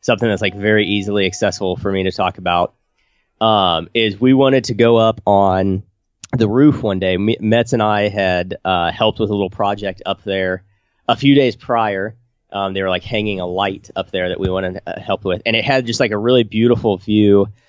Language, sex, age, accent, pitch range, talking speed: English, male, 30-49, American, 100-125 Hz, 215 wpm